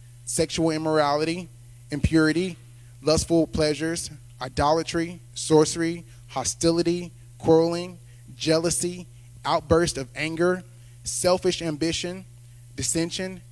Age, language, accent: 10-29, English, American